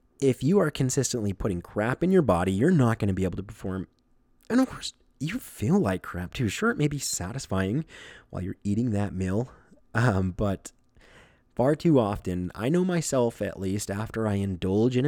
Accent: American